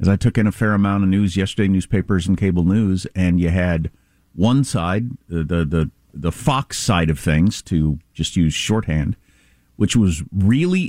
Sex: male